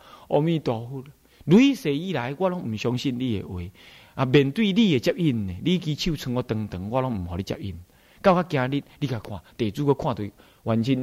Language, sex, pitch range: Chinese, male, 105-170 Hz